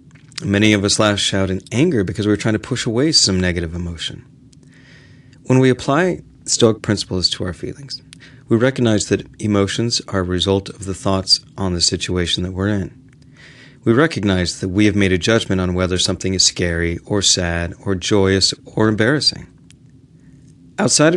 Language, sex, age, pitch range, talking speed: English, male, 40-59, 95-125 Hz, 170 wpm